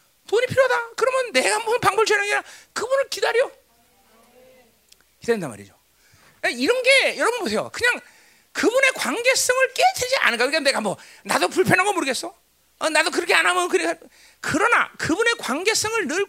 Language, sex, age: Korean, male, 40-59